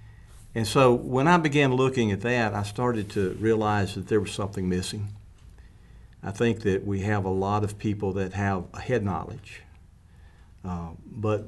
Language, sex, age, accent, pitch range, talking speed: English, male, 50-69, American, 95-110 Hz, 170 wpm